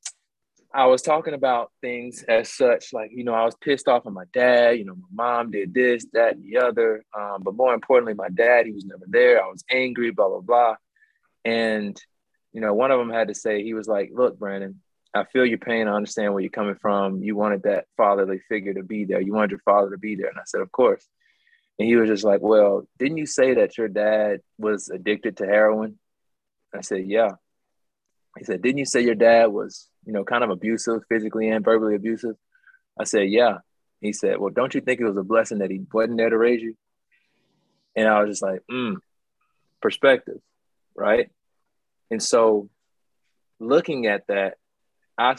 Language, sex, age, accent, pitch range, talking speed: English, male, 20-39, American, 105-125 Hz, 210 wpm